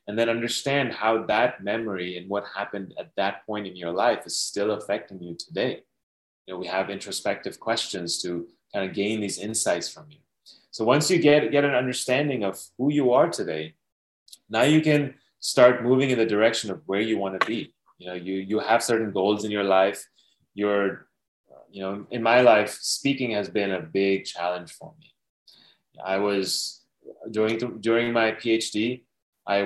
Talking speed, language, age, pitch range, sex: 185 wpm, English, 20-39, 95-115 Hz, male